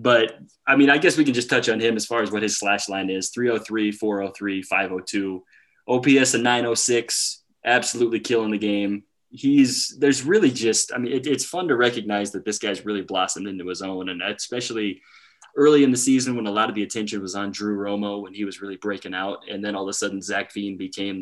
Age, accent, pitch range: 20-39, American, 100-125 Hz